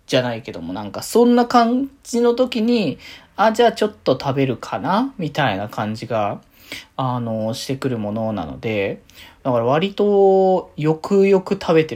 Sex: male